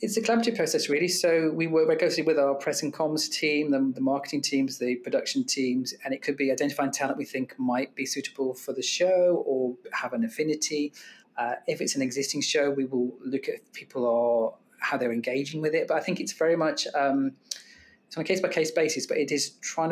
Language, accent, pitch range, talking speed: English, British, 130-155 Hz, 215 wpm